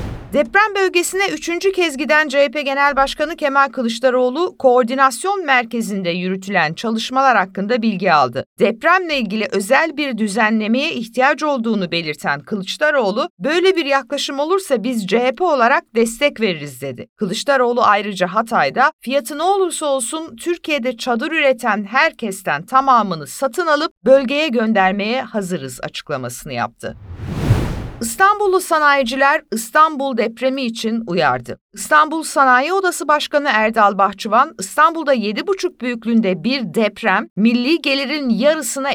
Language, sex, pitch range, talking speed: Turkish, female, 215-295 Hz, 115 wpm